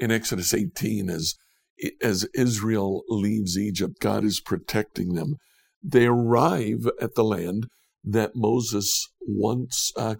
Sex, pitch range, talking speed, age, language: male, 105-125 Hz, 125 wpm, 60-79, English